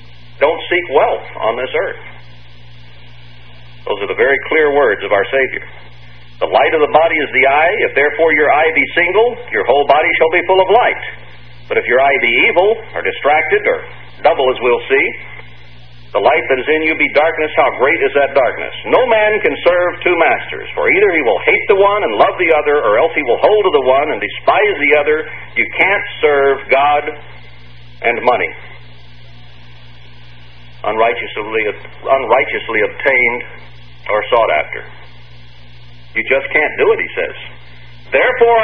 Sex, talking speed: male, 175 wpm